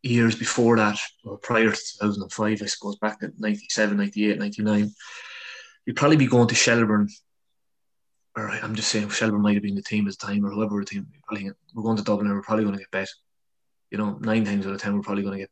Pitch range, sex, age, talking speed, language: 105-120 Hz, male, 20-39, 230 wpm, English